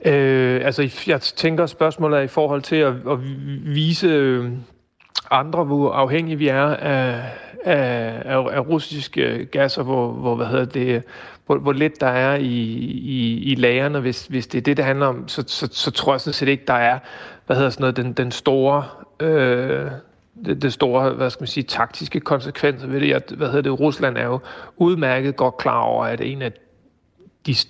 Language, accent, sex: Danish, native, male